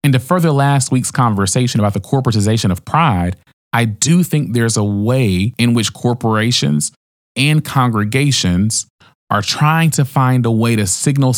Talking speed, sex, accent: 160 wpm, male, American